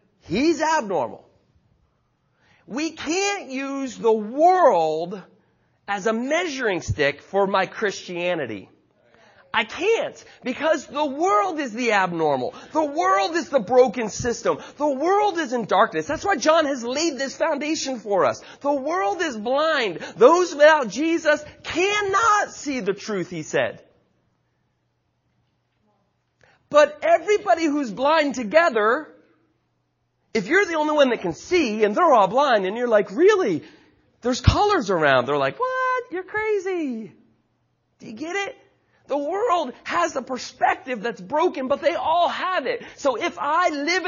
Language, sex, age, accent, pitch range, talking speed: English, male, 40-59, American, 240-345 Hz, 140 wpm